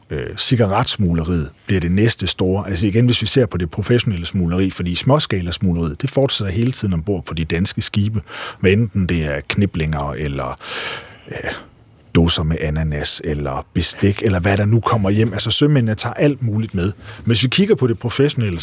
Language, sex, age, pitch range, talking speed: Danish, male, 40-59, 90-120 Hz, 175 wpm